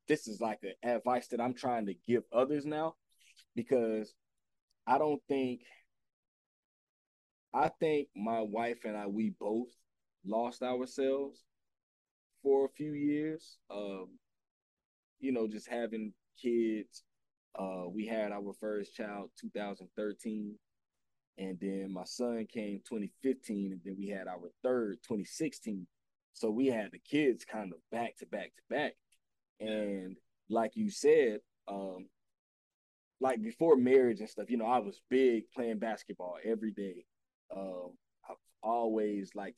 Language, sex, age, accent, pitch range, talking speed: English, male, 20-39, American, 100-125 Hz, 140 wpm